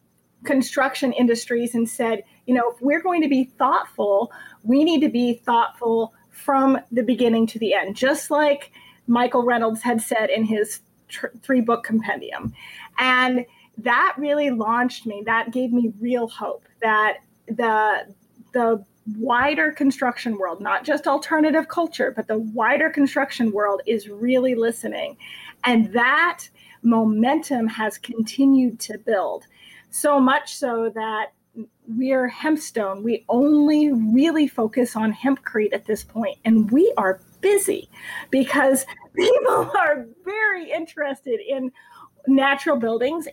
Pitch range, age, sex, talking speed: 225-280 Hz, 30-49, female, 135 wpm